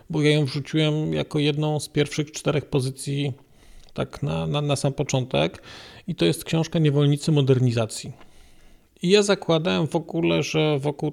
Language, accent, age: Polish, native, 40-59